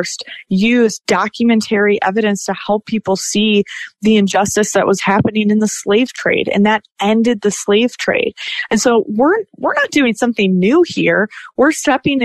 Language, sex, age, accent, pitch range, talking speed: English, female, 20-39, American, 185-230 Hz, 160 wpm